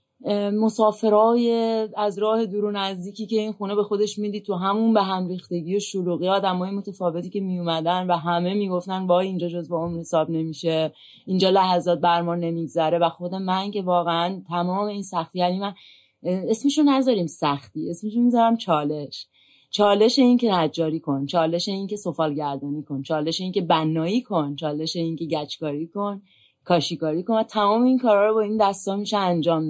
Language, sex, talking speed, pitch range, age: Persian, female, 175 wpm, 165-210 Hz, 30-49